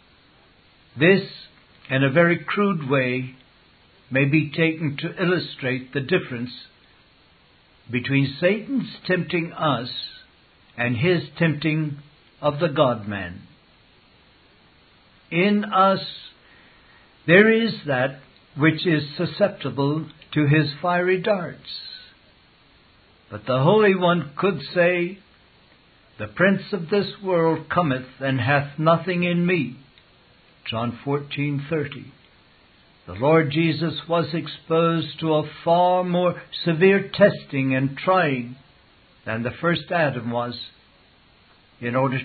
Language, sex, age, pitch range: English, male, 60-79, 130-175 Hz